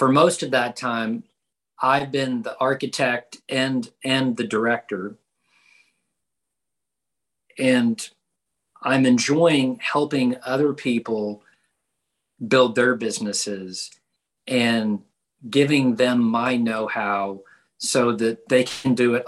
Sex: male